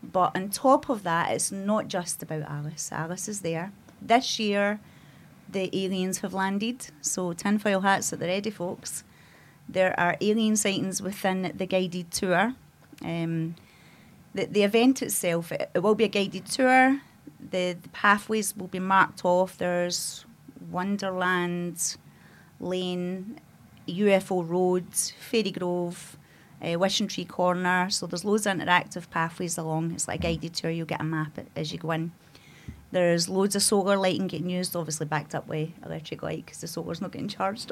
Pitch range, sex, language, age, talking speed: 170-200 Hz, female, English, 30-49, 160 wpm